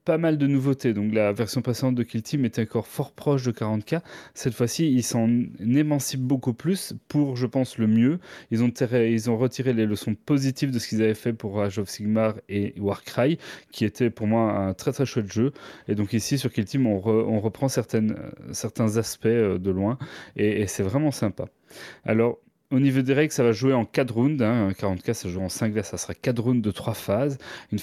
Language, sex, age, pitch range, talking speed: French, male, 30-49, 110-135 Hz, 225 wpm